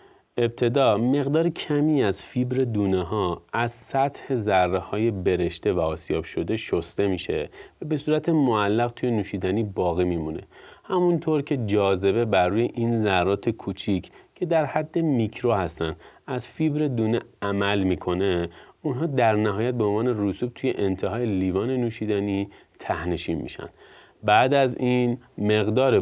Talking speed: 135 wpm